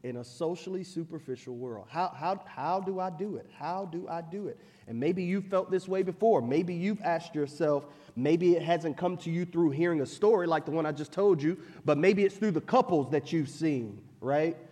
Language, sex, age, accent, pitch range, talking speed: English, male, 30-49, American, 155-215 Hz, 225 wpm